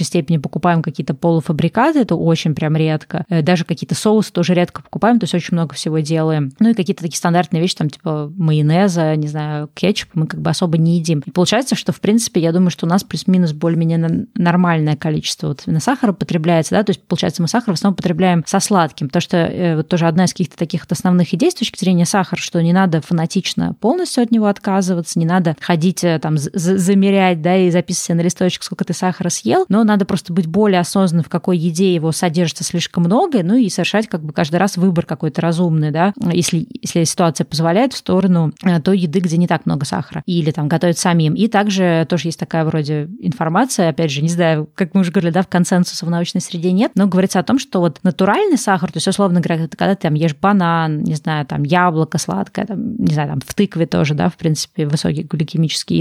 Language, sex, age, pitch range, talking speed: Russian, female, 20-39, 165-195 Hz, 215 wpm